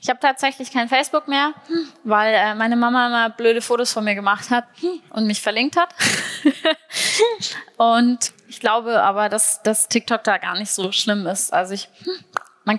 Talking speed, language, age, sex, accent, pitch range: 170 wpm, German, 20-39, female, German, 205-235 Hz